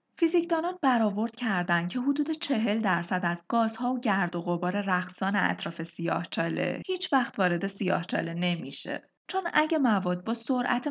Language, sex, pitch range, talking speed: Persian, female, 175-245 Hz, 145 wpm